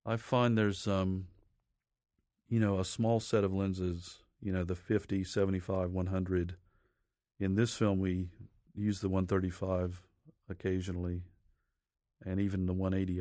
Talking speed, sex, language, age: 130 wpm, male, English, 40-59